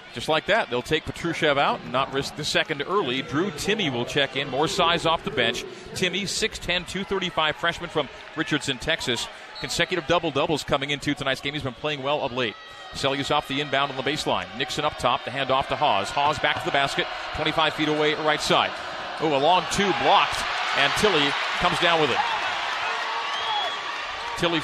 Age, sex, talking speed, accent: 40-59, male, 195 wpm, American